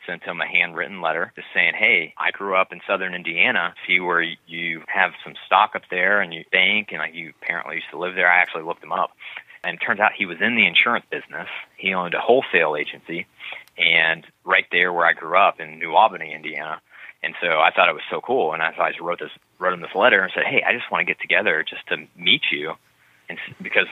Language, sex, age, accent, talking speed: English, male, 30-49, American, 245 wpm